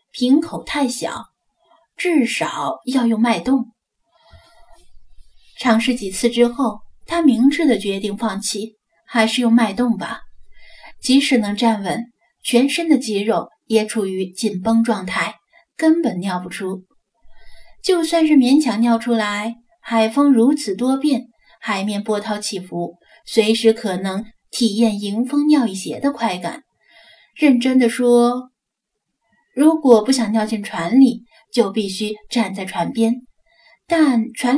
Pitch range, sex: 210-270 Hz, female